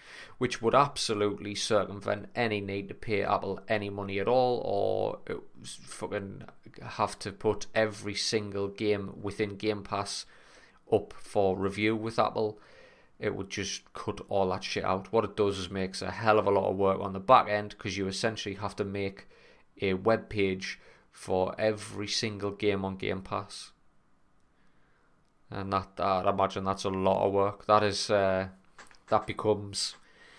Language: English